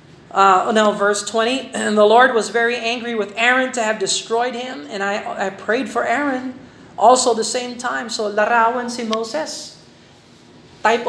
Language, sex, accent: Filipino, male, native